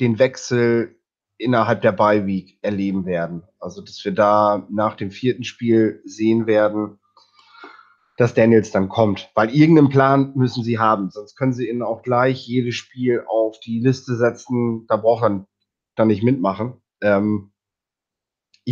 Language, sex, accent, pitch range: German, male, German, 105-125 Hz